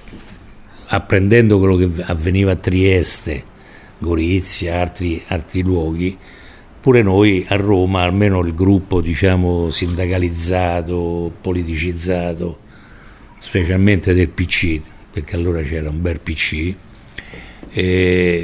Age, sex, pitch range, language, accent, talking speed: 50-69, male, 90-110 Hz, Italian, native, 100 wpm